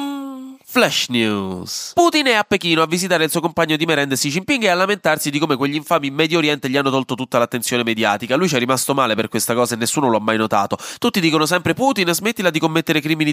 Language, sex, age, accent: Italian, male, 20-39, native